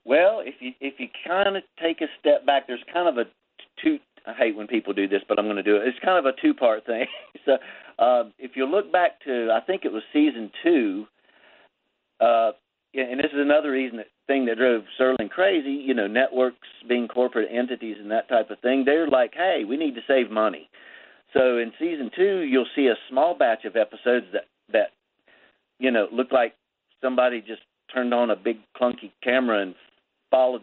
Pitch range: 110-150 Hz